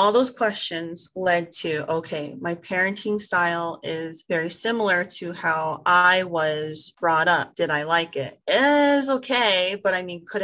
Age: 30-49